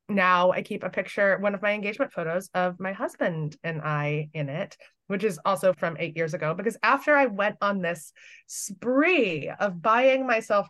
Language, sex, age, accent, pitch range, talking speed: English, female, 20-39, American, 180-240 Hz, 190 wpm